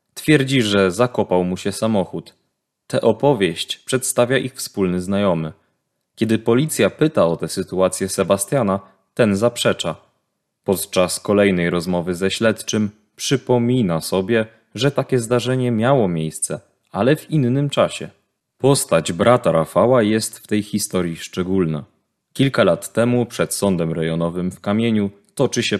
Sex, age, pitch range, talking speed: male, 20-39, 95-120 Hz, 130 wpm